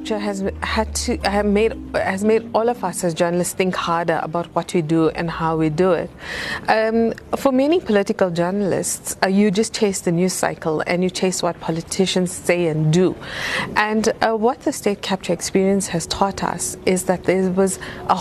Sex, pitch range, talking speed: female, 170-210 Hz, 190 wpm